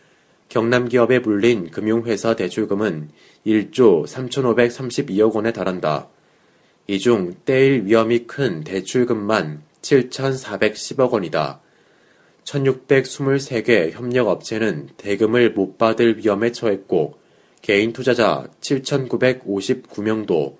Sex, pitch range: male, 105-125 Hz